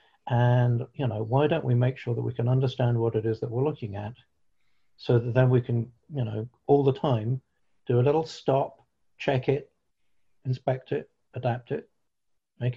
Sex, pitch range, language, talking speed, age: male, 120-140 Hz, English, 190 wpm, 50-69